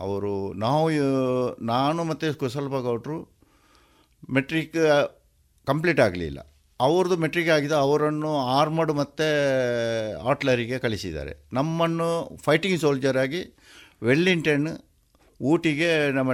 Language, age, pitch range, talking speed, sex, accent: Kannada, 50-69, 105-150 Hz, 85 wpm, male, native